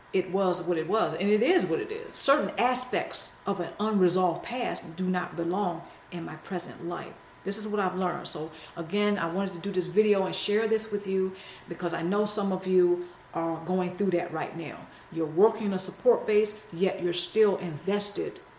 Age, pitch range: 50-69, 175-205 Hz